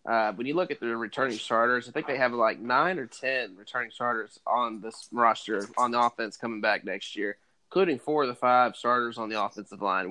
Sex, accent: male, American